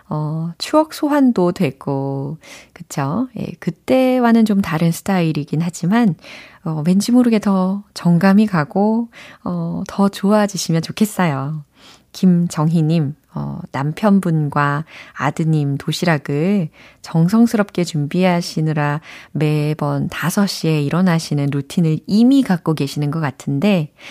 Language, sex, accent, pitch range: Korean, female, native, 155-210 Hz